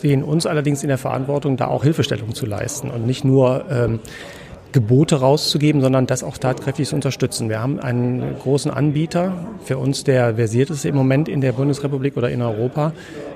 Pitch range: 125-150 Hz